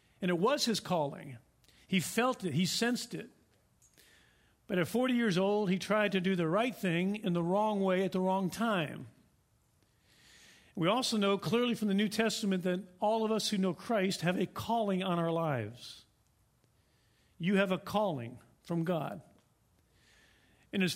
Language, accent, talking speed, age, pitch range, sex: English, American, 170 wpm, 50-69, 165-210 Hz, male